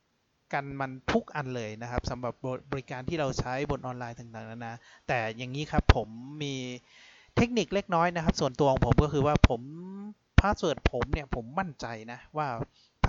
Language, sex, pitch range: Thai, male, 120-155 Hz